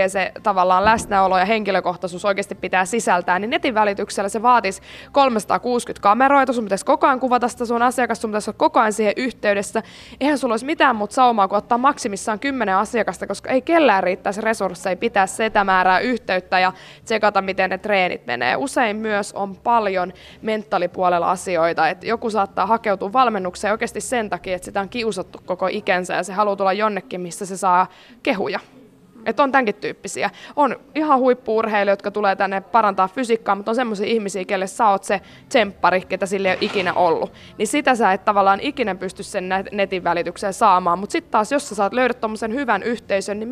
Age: 20-39